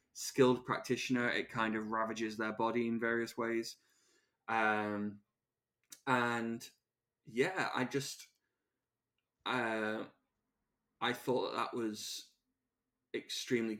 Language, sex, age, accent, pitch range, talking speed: English, male, 10-29, British, 110-125 Hz, 95 wpm